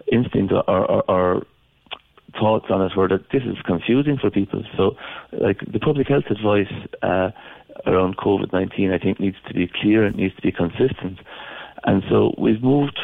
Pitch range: 95-115 Hz